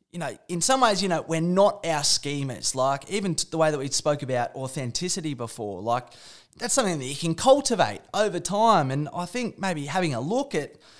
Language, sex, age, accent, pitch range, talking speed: English, male, 20-39, Australian, 145-190 Hz, 205 wpm